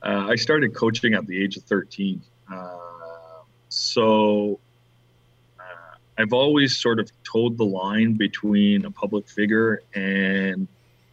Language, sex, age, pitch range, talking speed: English, male, 30-49, 90-110 Hz, 130 wpm